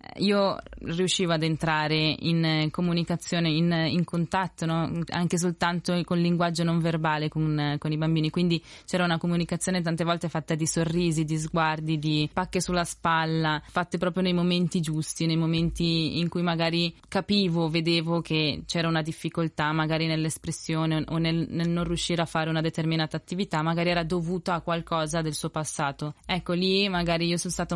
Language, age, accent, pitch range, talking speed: Italian, 20-39, native, 155-175 Hz, 170 wpm